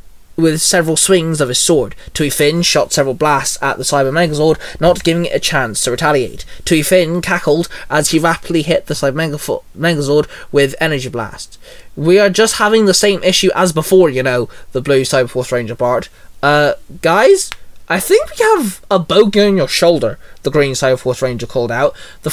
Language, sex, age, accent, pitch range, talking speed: English, male, 20-39, British, 135-180 Hz, 185 wpm